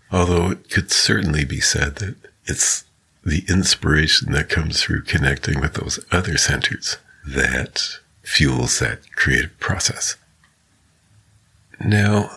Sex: male